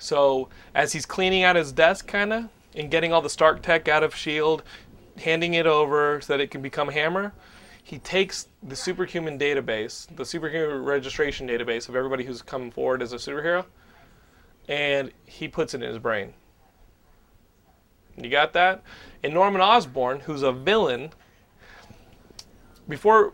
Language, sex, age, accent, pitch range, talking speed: English, male, 30-49, American, 135-180 Hz, 155 wpm